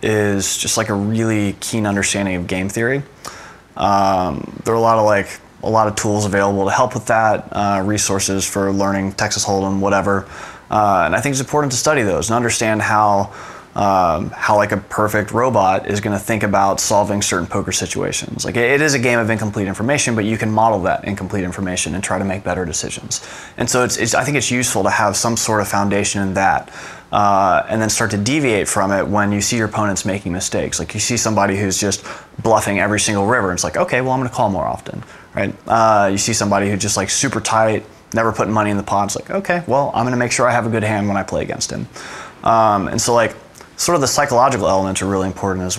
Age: 20-39